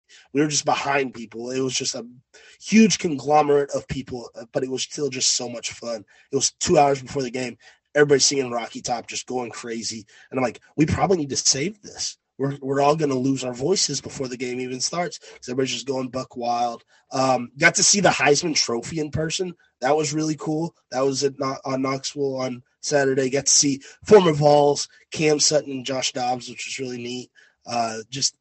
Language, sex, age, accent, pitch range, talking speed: English, male, 20-39, American, 130-155 Hz, 205 wpm